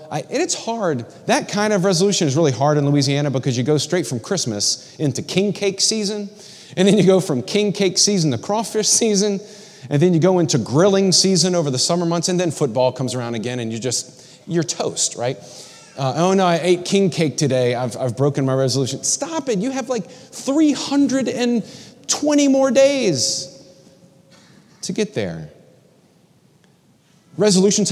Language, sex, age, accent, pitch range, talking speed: English, male, 30-49, American, 125-190 Hz, 170 wpm